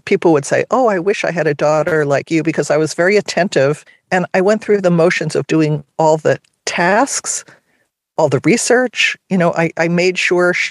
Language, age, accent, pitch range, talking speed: English, 50-69, American, 150-185 Hz, 215 wpm